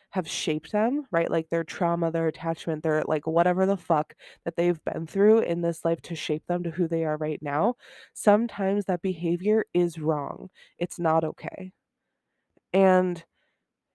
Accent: American